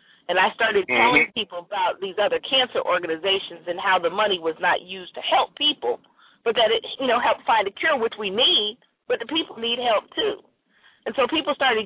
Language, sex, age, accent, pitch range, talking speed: English, female, 40-59, American, 185-260 Hz, 210 wpm